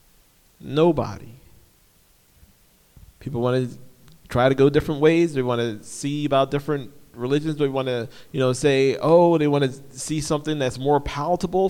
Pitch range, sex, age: 120-150 Hz, male, 40-59